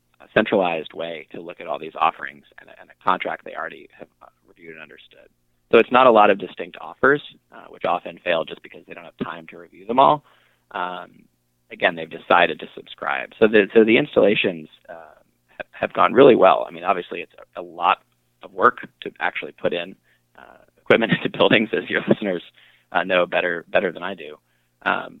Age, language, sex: 20-39, English, male